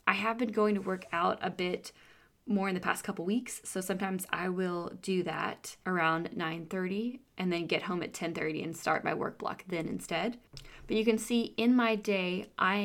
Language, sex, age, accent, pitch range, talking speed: English, female, 20-39, American, 185-220 Hz, 205 wpm